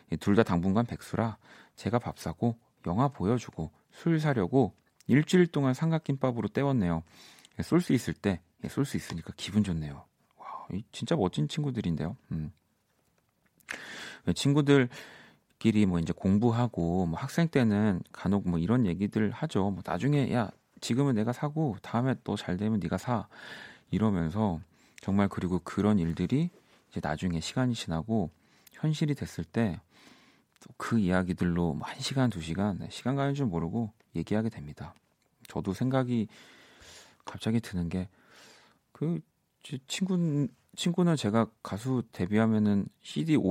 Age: 40-59